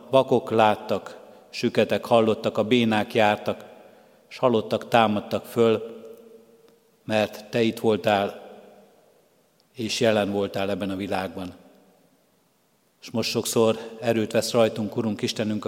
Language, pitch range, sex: Hungarian, 105-120 Hz, male